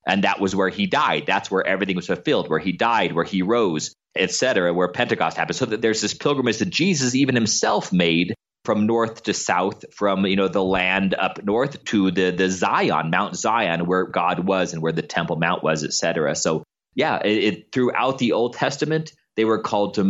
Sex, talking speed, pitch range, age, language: male, 215 wpm, 90-105 Hz, 30-49, English